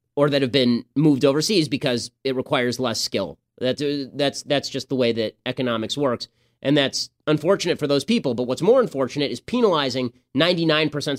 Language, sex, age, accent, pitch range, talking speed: English, male, 30-49, American, 125-165 Hz, 175 wpm